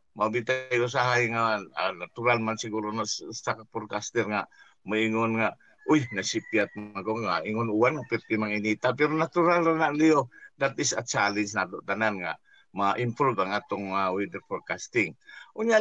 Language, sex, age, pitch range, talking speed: Filipino, male, 50-69, 105-125 Hz, 150 wpm